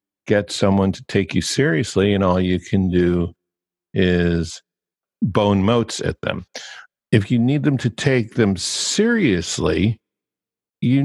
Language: English